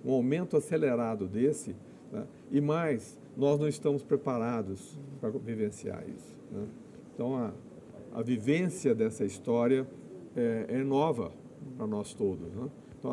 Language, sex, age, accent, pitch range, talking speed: Portuguese, male, 50-69, Brazilian, 130-155 Hz, 135 wpm